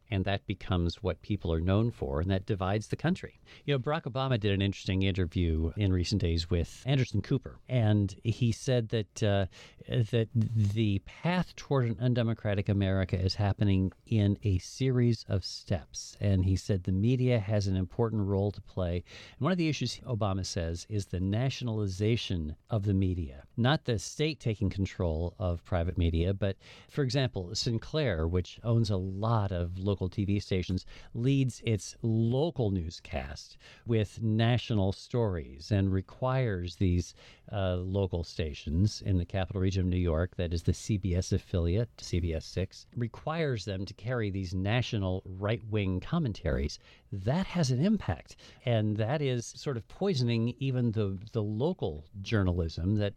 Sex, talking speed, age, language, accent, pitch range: male, 160 wpm, 50-69, English, American, 95-120 Hz